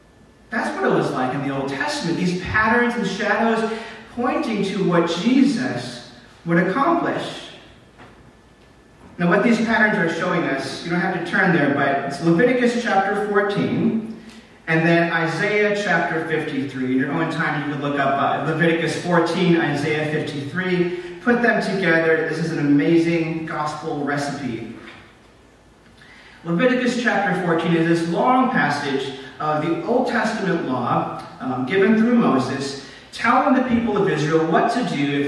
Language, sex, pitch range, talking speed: English, male, 150-210 Hz, 150 wpm